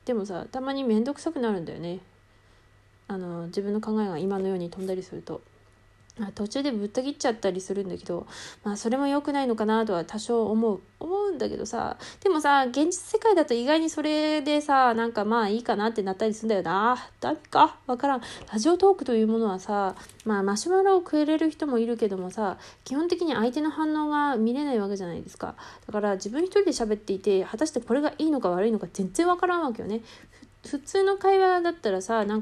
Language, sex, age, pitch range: Japanese, female, 20-39, 200-285 Hz